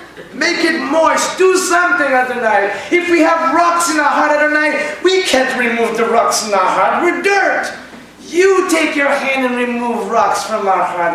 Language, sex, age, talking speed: English, male, 30-49, 200 wpm